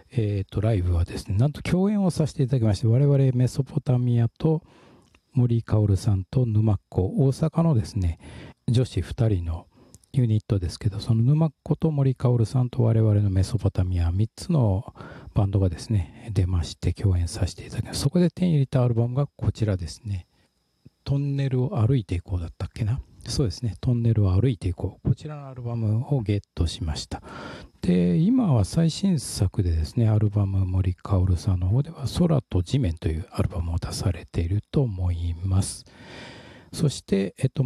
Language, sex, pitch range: Japanese, male, 95-135 Hz